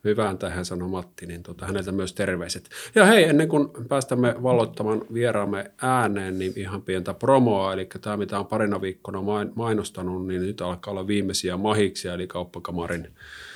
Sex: male